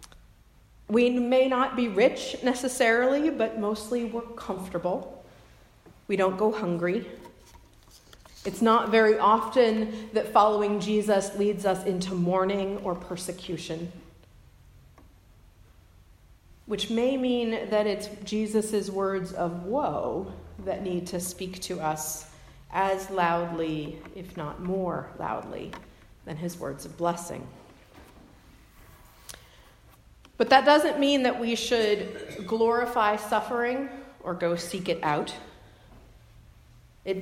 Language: English